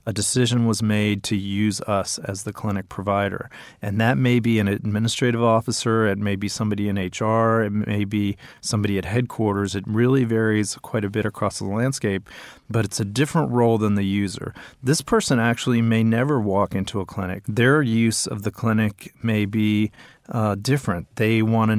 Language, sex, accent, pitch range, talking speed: English, male, American, 100-115 Hz, 185 wpm